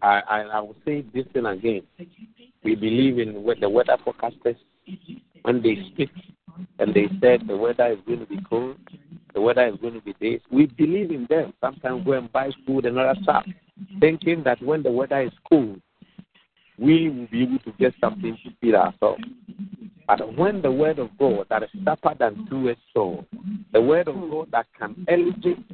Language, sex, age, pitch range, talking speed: English, male, 50-69, 120-190 Hz, 200 wpm